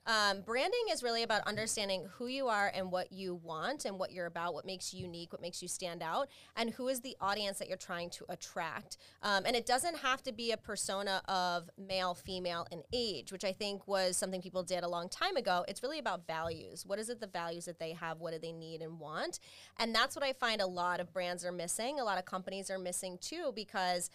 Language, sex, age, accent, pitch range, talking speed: English, female, 20-39, American, 180-230 Hz, 245 wpm